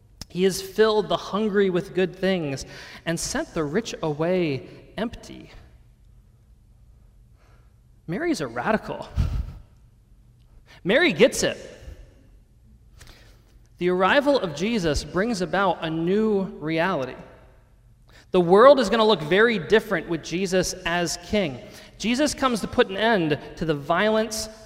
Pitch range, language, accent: 145-210 Hz, English, American